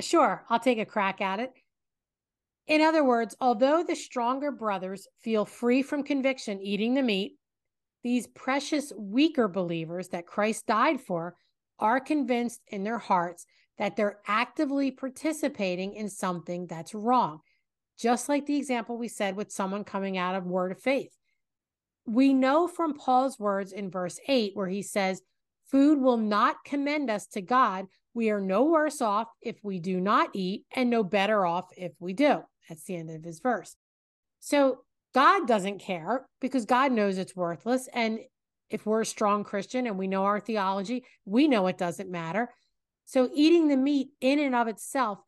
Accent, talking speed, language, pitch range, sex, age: American, 170 wpm, English, 195-265 Hz, female, 40-59